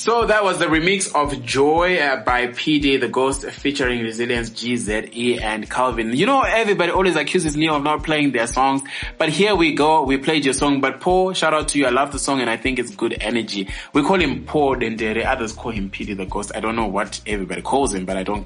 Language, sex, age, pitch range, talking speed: English, male, 20-39, 115-155 Hz, 235 wpm